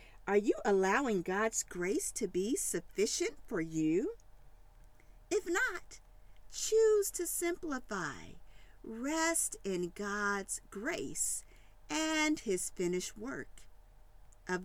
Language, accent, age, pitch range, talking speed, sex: English, American, 50-69, 200-330 Hz, 100 wpm, female